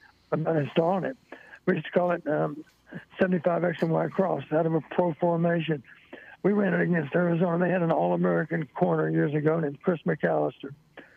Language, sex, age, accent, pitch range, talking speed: English, male, 60-79, American, 165-195 Hz, 170 wpm